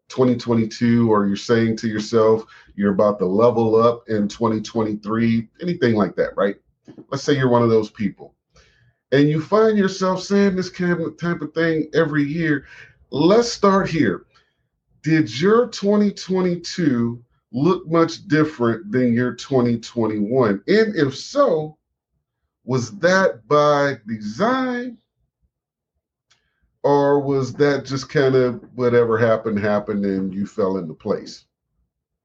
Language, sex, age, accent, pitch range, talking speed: English, male, 40-59, American, 115-155 Hz, 130 wpm